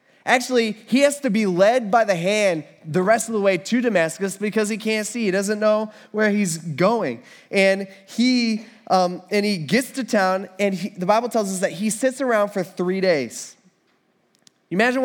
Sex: male